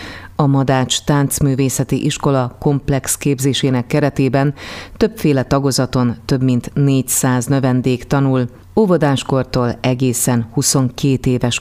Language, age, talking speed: Hungarian, 30-49, 95 wpm